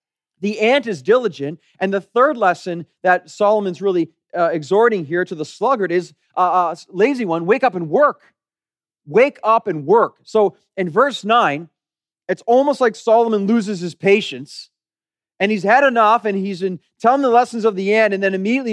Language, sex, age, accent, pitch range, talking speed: English, male, 30-49, American, 160-235 Hz, 185 wpm